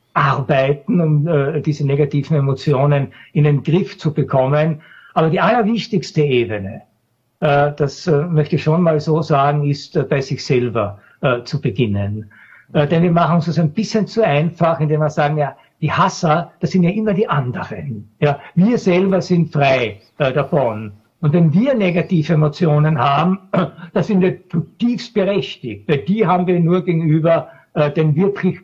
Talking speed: 170 wpm